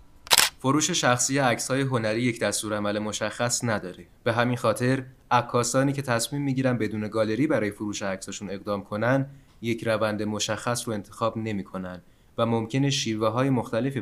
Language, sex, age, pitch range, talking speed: Persian, male, 20-39, 105-125 Hz, 155 wpm